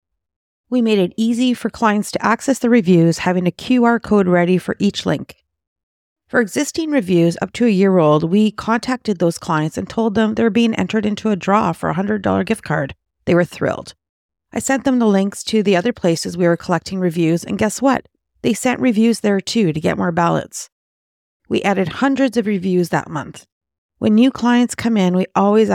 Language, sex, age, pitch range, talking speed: English, female, 40-59, 170-230 Hz, 205 wpm